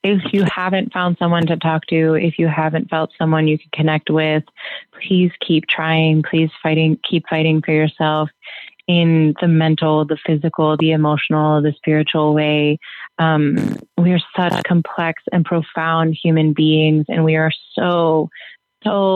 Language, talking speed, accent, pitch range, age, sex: English, 155 wpm, American, 155-170 Hz, 20-39, female